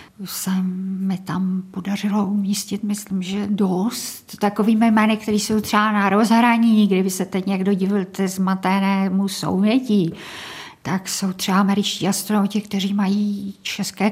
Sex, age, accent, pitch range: female, 50-69, native, 180-200 Hz